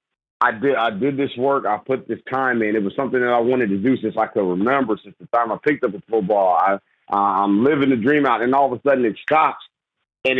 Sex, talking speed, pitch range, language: male, 260 wpm, 115-140 Hz, English